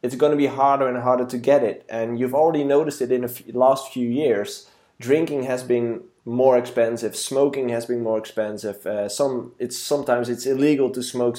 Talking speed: 200 wpm